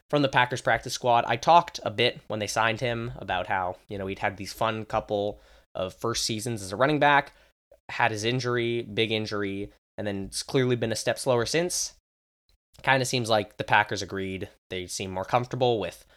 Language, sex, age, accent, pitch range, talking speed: English, male, 20-39, American, 100-135 Hz, 205 wpm